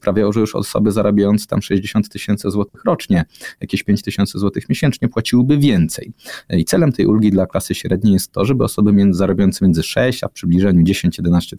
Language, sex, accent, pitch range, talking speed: Polish, male, native, 95-125 Hz, 180 wpm